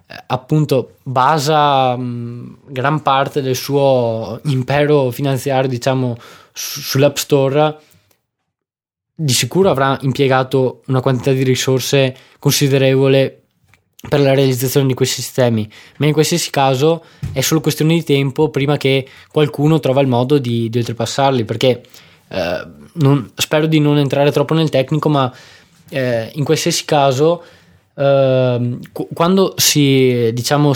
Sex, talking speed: male, 125 wpm